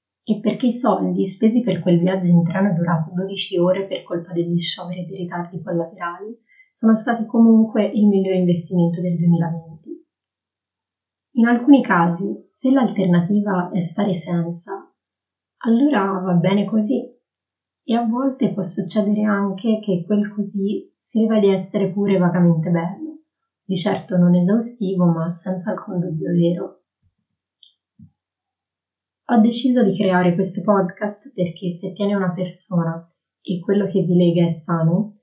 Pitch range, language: 170-210 Hz, Italian